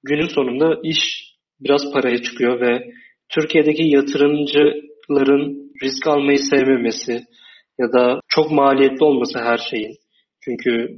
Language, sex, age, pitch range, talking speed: Turkish, male, 30-49, 130-150 Hz, 110 wpm